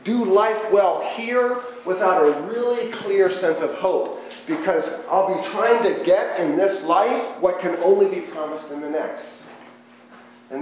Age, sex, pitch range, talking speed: 40-59, male, 150-240 Hz, 165 wpm